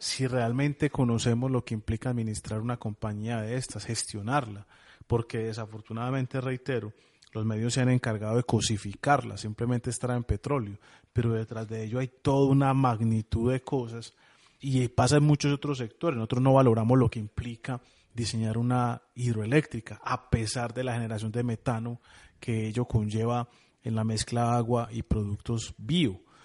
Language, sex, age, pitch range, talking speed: Spanish, male, 30-49, 115-130 Hz, 155 wpm